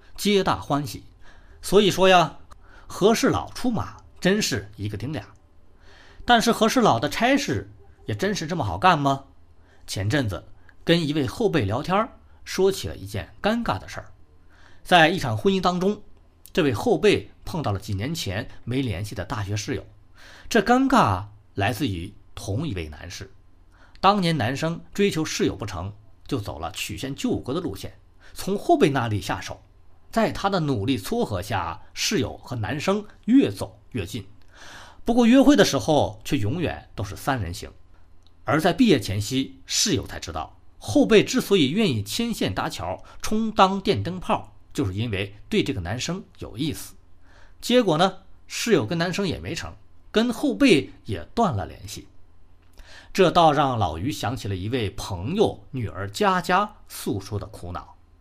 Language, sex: Chinese, male